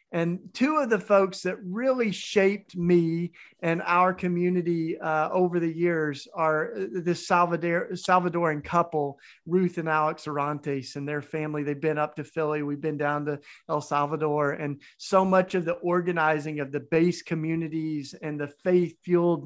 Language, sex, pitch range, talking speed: English, male, 155-185 Hz, 155 wpm